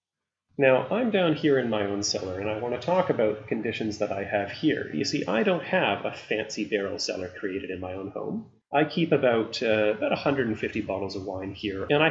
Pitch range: 100-135 Hz